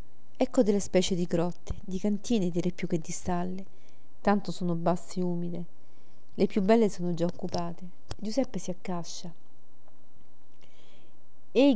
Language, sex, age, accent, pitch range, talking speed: Italian, female, 40-59, native, 175-200 Hz, 140 wpm